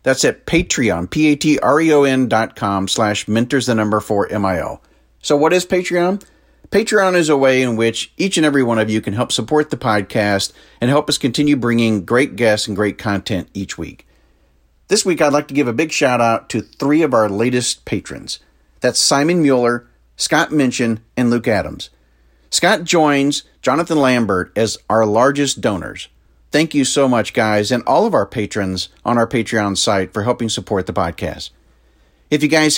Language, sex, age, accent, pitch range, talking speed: English, male, 40-59, American, 110-150 Hz, 180 wpm